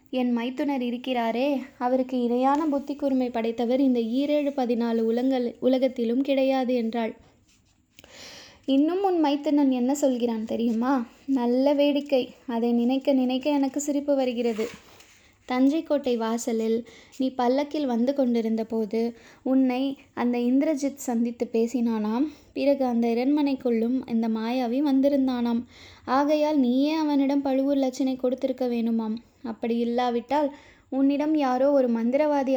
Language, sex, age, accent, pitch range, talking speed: Tamil, female, 20-39, native, 240-275 Hz, 110 wpm